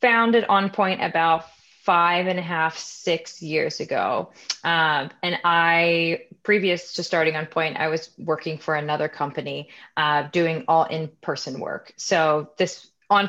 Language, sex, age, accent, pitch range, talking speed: English, female, 20-39, American, 155-175 Hz, 155 wpm